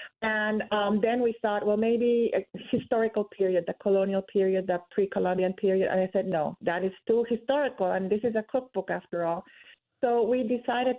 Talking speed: 185 wpm